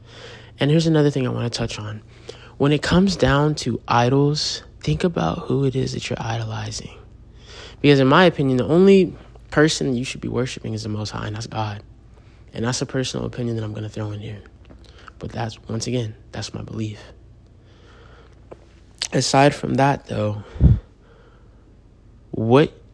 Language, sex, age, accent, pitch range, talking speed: English, male, 20-39, American, 110-130 Hz, 170 wpm